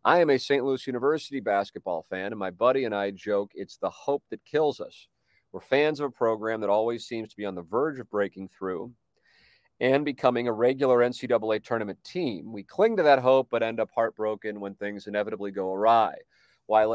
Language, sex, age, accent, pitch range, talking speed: English, male, 40-59, American, 105-130 Hz, 205 wpm